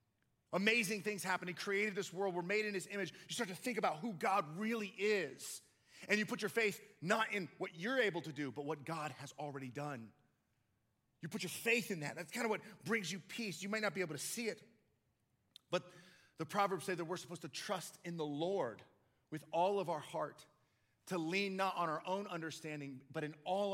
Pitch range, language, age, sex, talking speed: 140-185 Hz, English, 30-49, male, 220 wpm